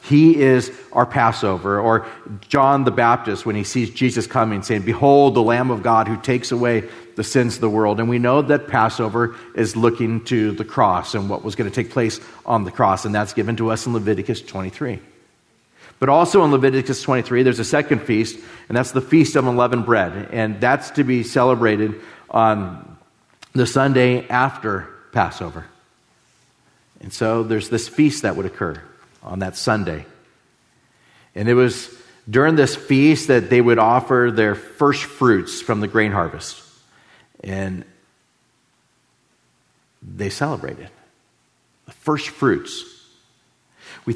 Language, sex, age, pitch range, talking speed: English, male, 40-59, 110-135 Hz, 160 wpm